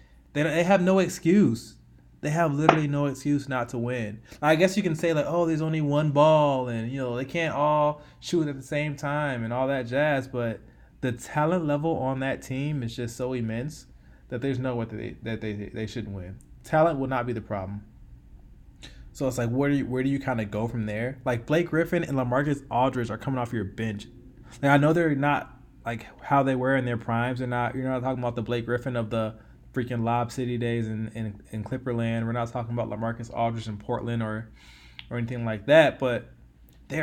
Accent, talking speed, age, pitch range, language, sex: American, 220 wpm, 20-39, 115-150 Hz, English, male